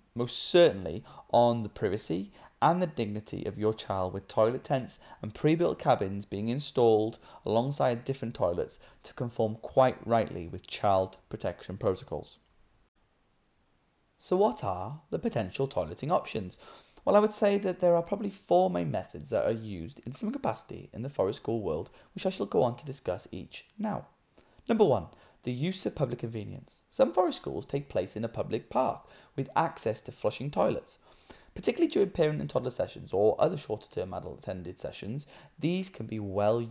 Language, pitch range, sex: English, 110-170 Hz, male